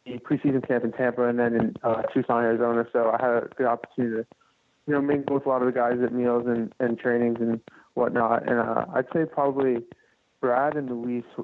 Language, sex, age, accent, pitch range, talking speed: English, male, 20-39, American, 115-130 Hz, 215 wpm